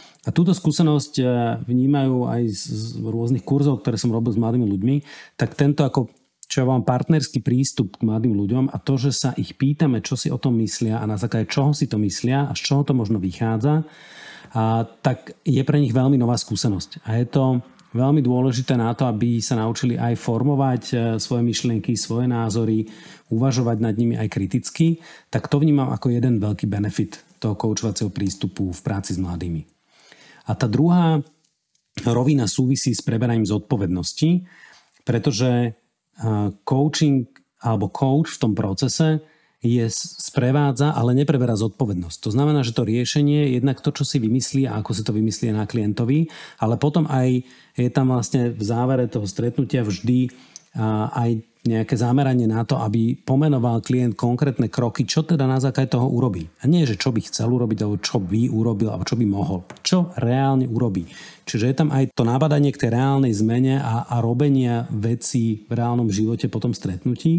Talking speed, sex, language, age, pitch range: 175 wpm, male, Slovak, 40-59, 115-140 Hz